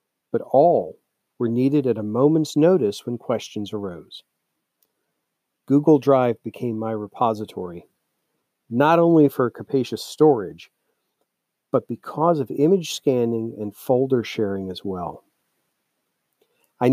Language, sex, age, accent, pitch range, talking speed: English, male, 50-69, American, 110-150 Hz, 110 wpm